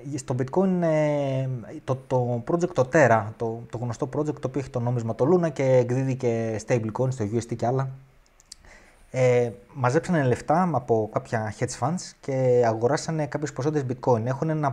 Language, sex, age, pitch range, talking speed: Greek, male, 20-39, 120-155 Hz, 155 wpm